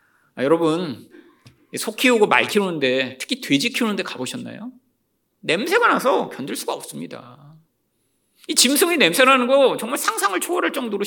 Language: Korean